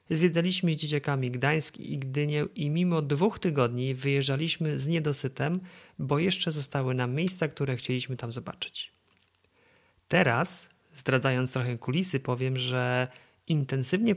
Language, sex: Polish, male